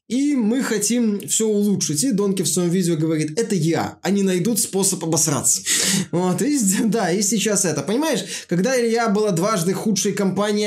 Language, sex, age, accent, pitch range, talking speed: Russian, male, 20-39, native, 160-200 Hz, 165 wpm